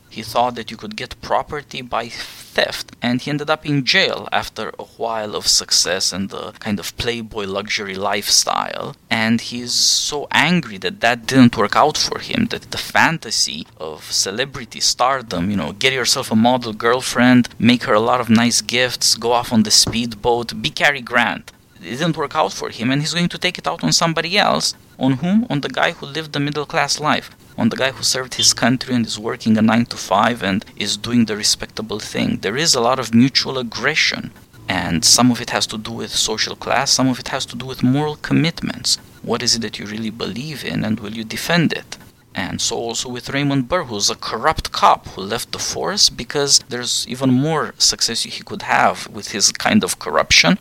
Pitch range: 115-150 Hz